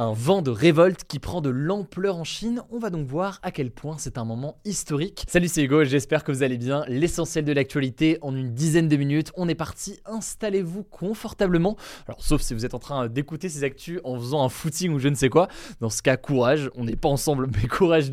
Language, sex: French, male